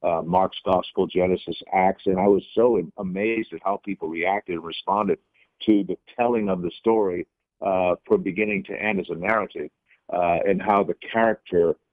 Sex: male